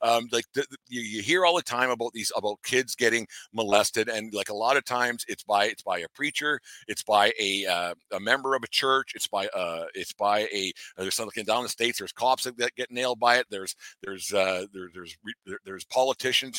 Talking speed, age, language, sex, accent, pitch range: 235 wpm, 50-69, English, male, American, 110-130 Hz